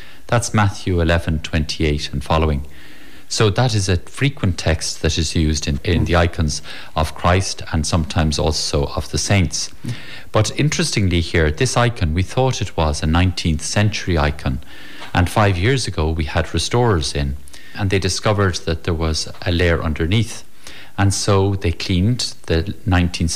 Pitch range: 80-105 Hz